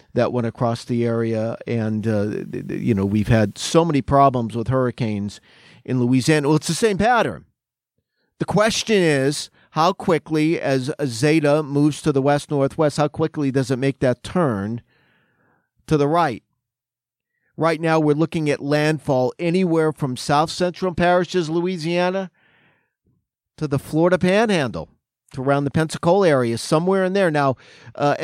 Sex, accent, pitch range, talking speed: male, American, 135-175 Hz, 145 wpm